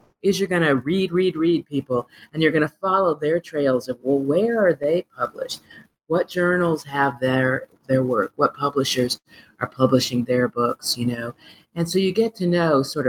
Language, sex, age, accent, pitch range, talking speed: English, female, 40-59, American, 125-180 Hz, 195 wpm